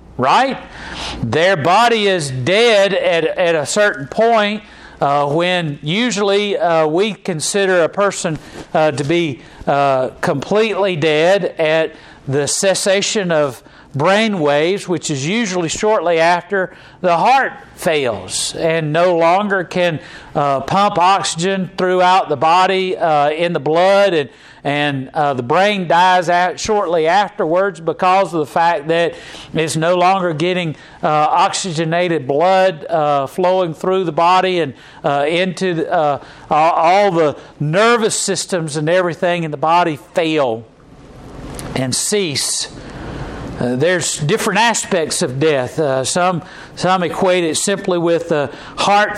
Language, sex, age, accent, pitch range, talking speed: English, male, 40-59, American, 155-190 Hz, 135 wpm